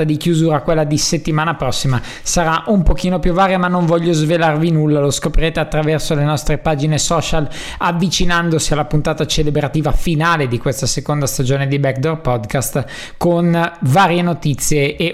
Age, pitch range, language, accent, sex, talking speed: 20-39, 140-165 Hz, Italian, native, male, 155 wpm